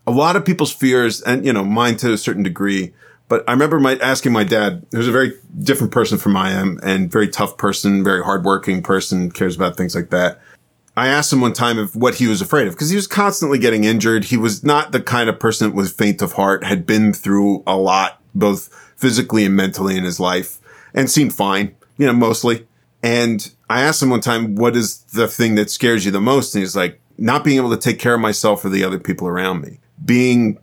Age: 40-59